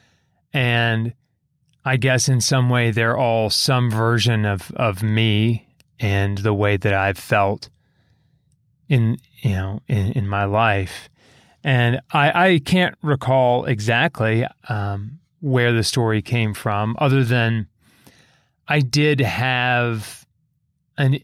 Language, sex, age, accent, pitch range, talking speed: English, male, 30-49, American, 110-135 Hz, 125 wpm